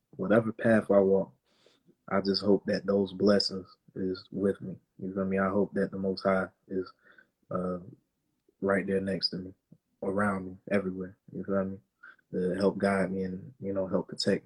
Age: 20-39